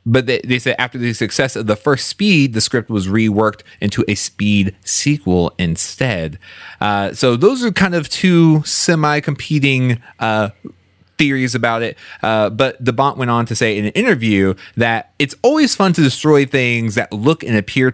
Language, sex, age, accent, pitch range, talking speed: English, male, 30-49, American, 105-140 Hz, 175 wpm